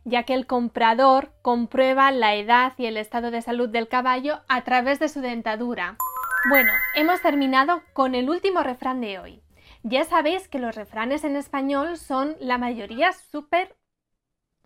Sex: female